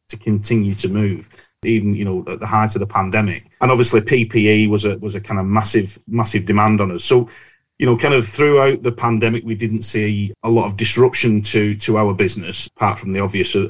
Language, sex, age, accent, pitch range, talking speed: English, male, 30-49, British, 105-120 Hz, 225 wpm